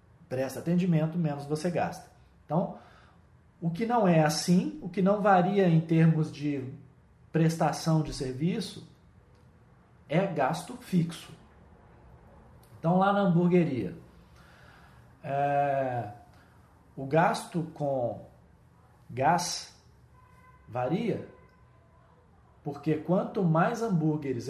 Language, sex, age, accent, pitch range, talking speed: Portuguese, male, 40-59, Brazilian, 135-180 Hz, 90 wpm